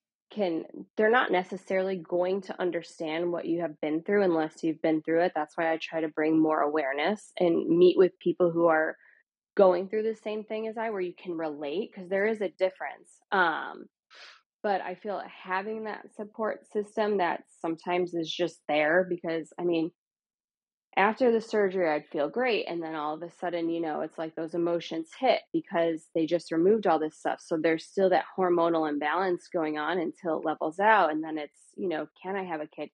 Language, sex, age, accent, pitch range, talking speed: English, female, 20-39, American, 165-200 Hz, 200 wpm